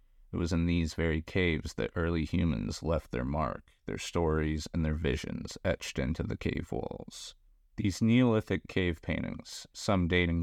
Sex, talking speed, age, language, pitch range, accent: male, 160 wpm, 30-49, English, 80-90 Hz, American